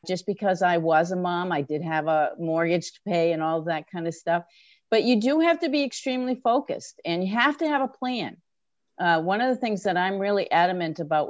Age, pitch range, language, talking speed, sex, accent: 50-69, 165-235 Hz, English, 235 wpm, female, American